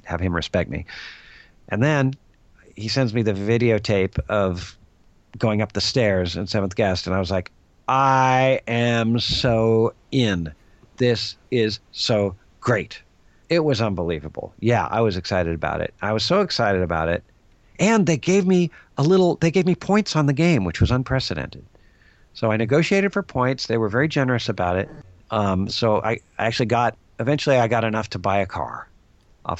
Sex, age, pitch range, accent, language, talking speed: male, 50-69, 95-135 Hz, American, English, 175 wpm